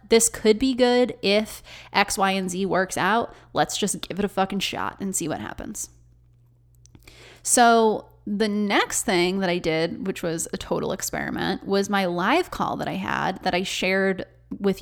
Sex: female